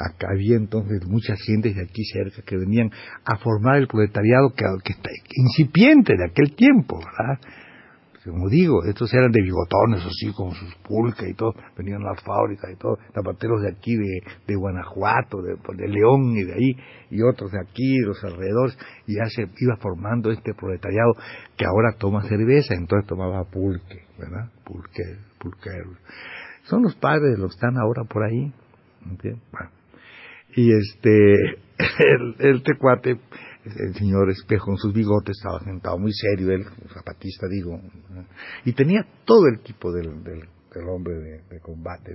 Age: 60-79